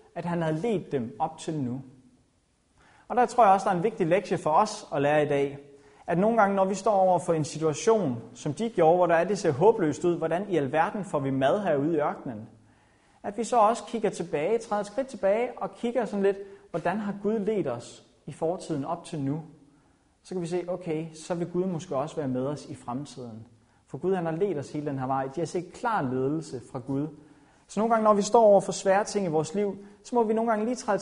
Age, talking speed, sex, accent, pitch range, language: 30-49, 250 wpm, male, native, 135-195 Hz, Danish